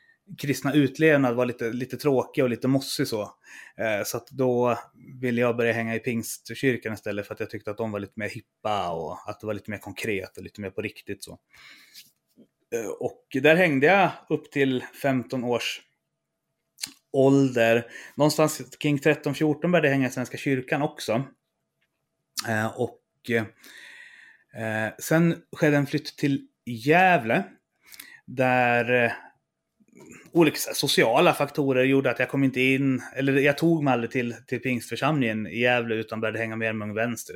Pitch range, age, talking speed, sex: 115-145 Hz, 30-49, 155 wpm, male